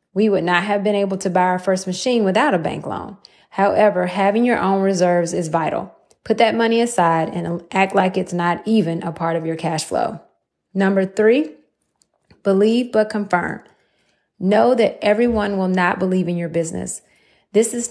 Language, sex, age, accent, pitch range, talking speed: English, female, 30-49, American, 175-210 Hz, 180 wpm